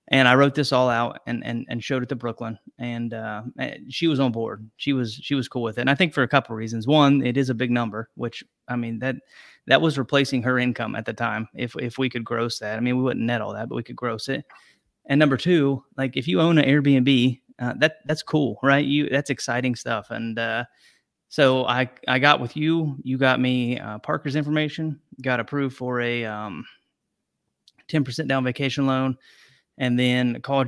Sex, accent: male, American